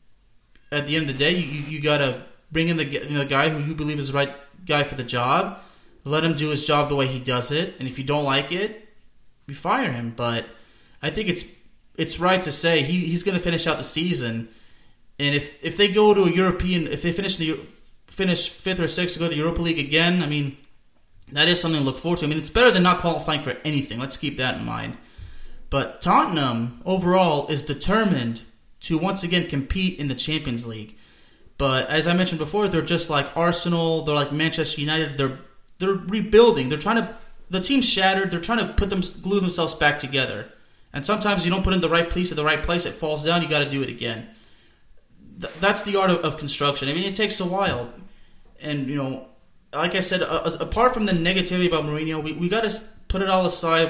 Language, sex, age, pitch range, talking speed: English, male, 30-49, 140-180 Hz, 230 wpm